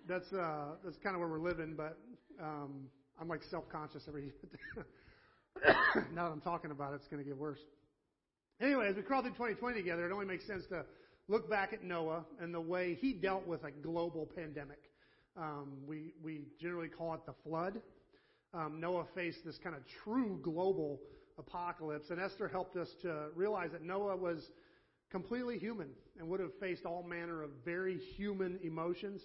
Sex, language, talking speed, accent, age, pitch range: male, English, 185 wpm, American, 40-59, 155-185 Hz